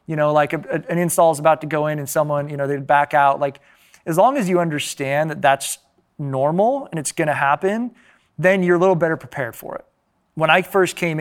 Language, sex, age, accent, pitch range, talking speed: English, male, 20-39, American, 140-165 Hz, 225 wpm